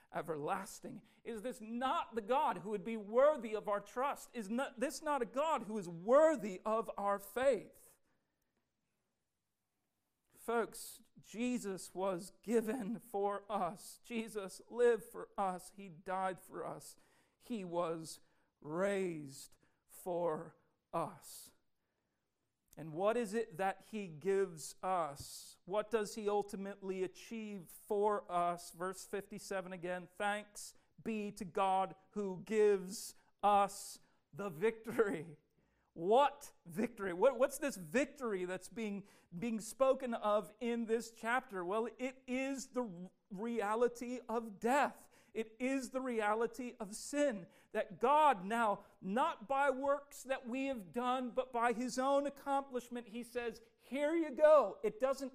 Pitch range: 200-265 Hz